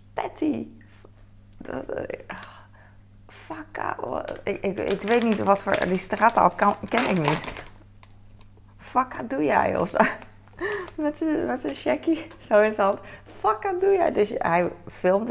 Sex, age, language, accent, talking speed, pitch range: female, 20-39, Dutch, Dutch, 120 wpm, 100-165 Hz